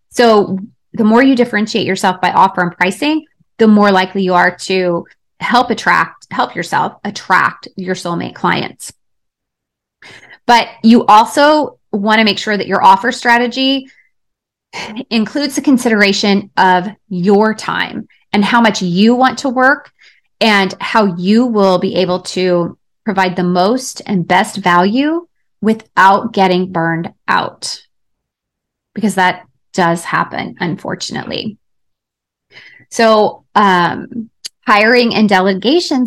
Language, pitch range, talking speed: English, 190-250 Hz, 125 wpm